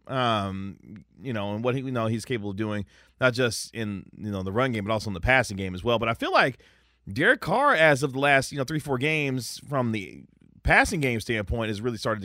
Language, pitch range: English, 95-120 Hz